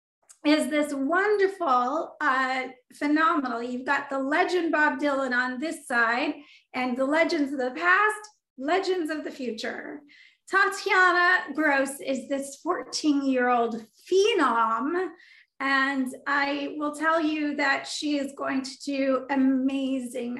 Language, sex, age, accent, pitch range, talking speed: English, female, 30-49, American, 245-300 Hz, 125 wpm